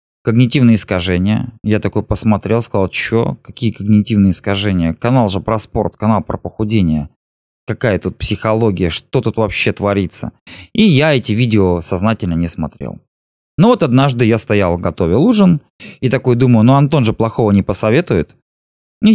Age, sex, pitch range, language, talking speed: 20-39, male, 90-125 Hz, Russian, 150 wpm